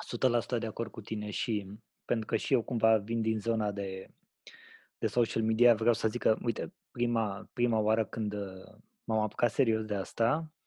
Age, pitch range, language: 20-39, 110-130 Hz, Romanian